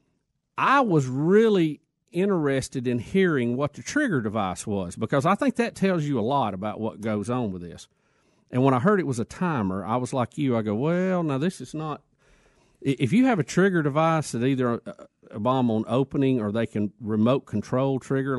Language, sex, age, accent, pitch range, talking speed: English, male, 50-69, American, 115-160 Hz, 205 wpm